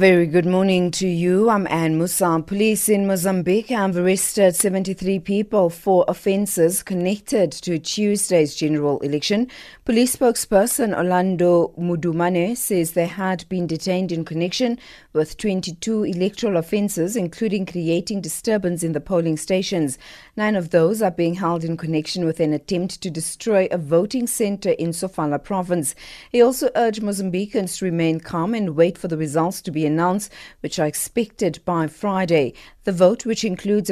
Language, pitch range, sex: English, 170-210 Hz, female